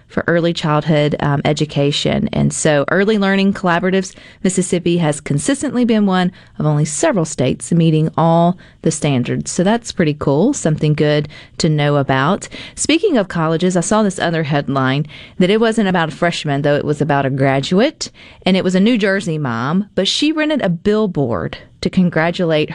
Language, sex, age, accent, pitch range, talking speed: English, female, 40-59, American, 150-195 Hz, 175 wpm